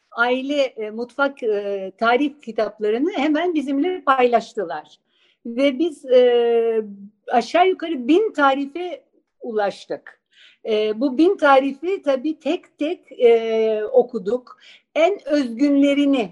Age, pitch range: 60-79, 235-295 Hz